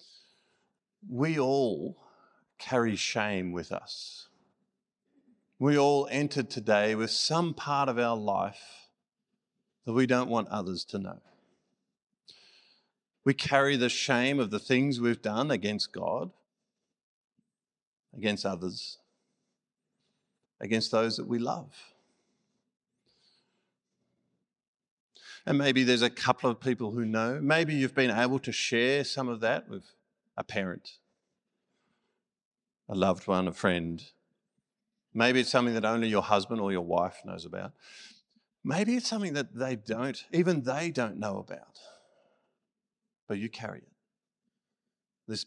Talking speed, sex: 125 wpm, male